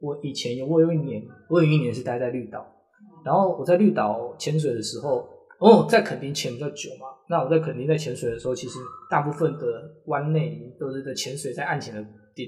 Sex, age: male, 20-39